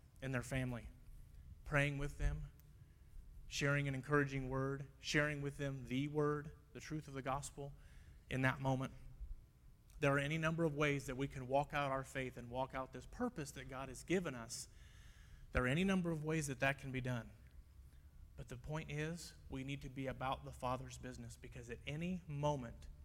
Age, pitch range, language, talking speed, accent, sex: 30-49, 120-150 Hz, English, 190 wpm, American, male